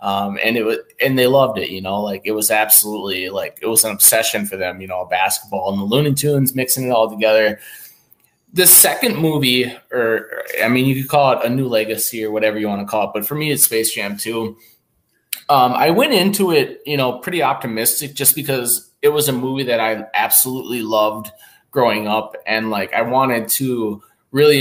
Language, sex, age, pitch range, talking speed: English, male, 20-39, 110-145 Hz, 210 wpm